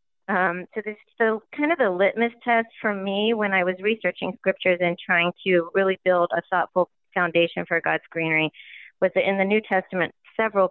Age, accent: 40-59, American